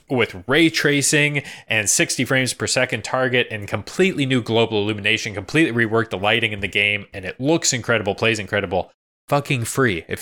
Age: 20-39